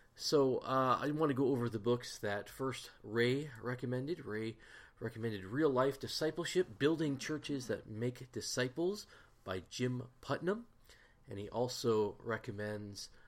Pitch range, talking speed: 100-125 Hz, 135 wpm